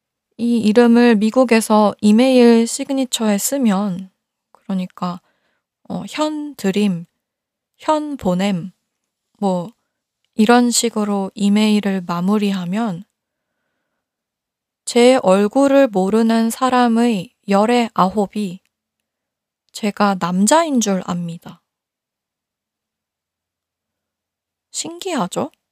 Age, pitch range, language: 20-39, 195-255 Hz, Korean